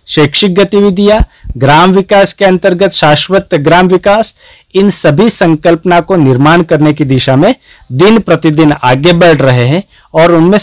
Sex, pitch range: male, 130-175 Hz